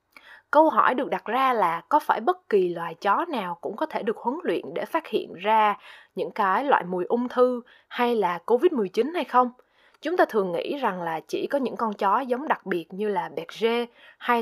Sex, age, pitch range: female, 20-39, 190-275 Hz